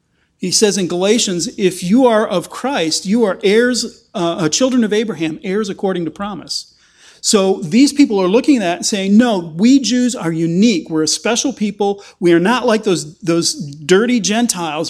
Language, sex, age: English, male, 40-59